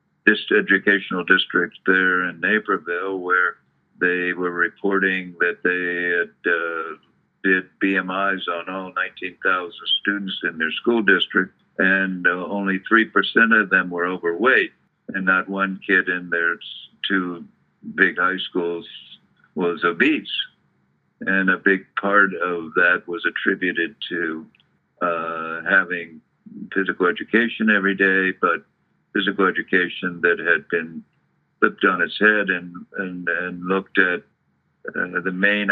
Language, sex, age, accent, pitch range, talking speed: English, male, 50-69, American, 90-100 Hz, 130 wpm